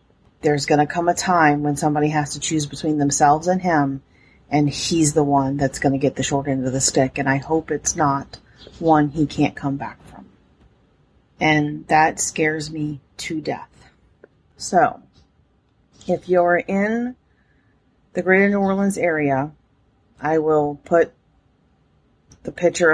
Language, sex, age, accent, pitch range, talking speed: English, female, 40-59, American, 145-170 Hz, 155 wpm